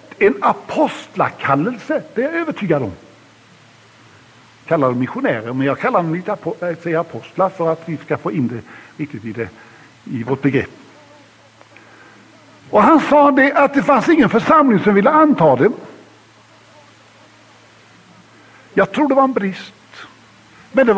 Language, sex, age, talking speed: English, male, 50-69, 140 wpm